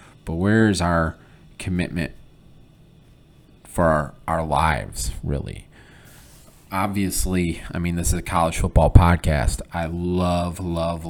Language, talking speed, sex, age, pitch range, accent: English, 120 wpm, male, 30-49, 80-95 Hz, American